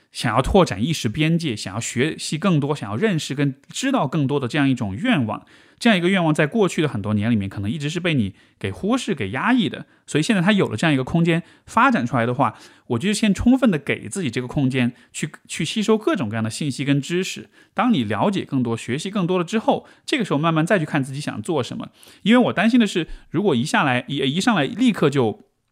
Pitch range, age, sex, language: 125-195 Hz, 20-39, male, Chinese